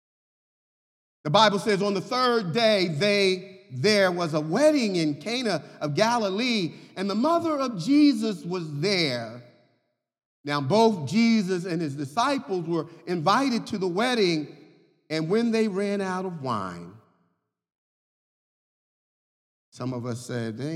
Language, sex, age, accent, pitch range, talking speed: English, male, 40-59, American, 145-220 Hz, 130 wpm